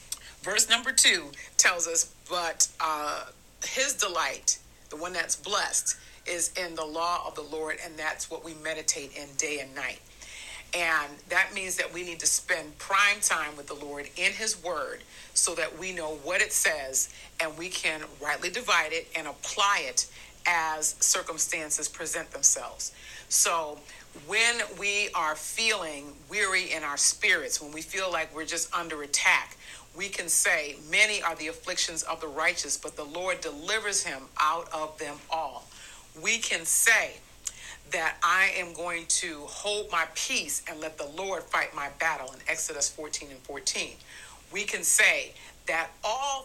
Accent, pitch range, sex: American, 155-190 Hz, female